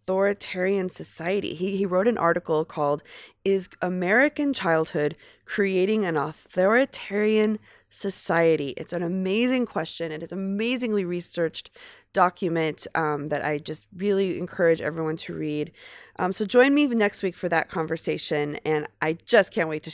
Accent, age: American, 20-39